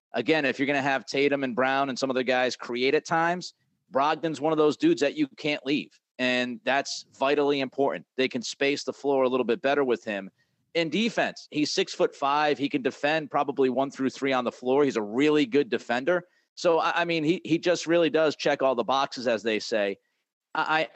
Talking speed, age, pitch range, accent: 220 wpm, 40-59, 125-155 Hz, American